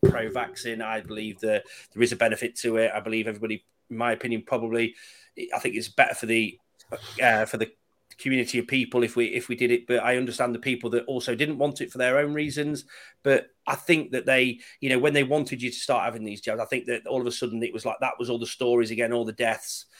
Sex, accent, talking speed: male, British, 250 wpm